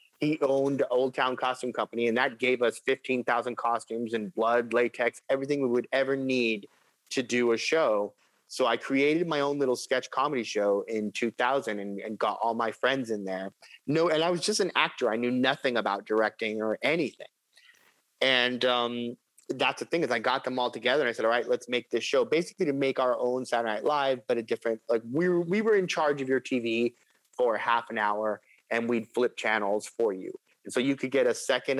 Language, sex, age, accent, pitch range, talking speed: English, male, 30-49, American, 115-135 Hz, 215 wpm